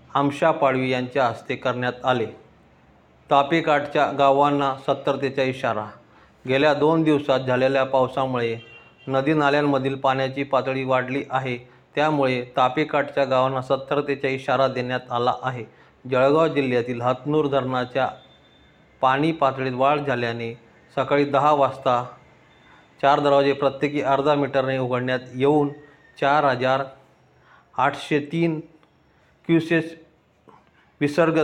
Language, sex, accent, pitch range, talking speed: Marathi, male, native, 130-145 Hz, 80 wpm